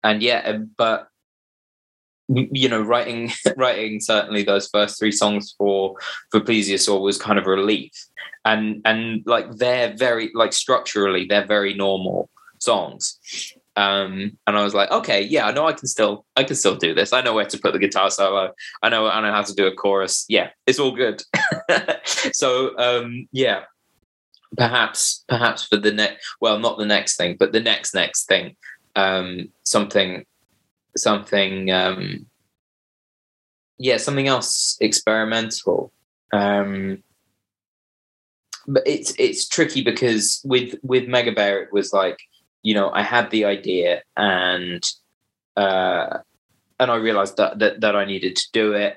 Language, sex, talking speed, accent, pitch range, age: German, male, 155 wpm, British, 100-115 Hz, 20-39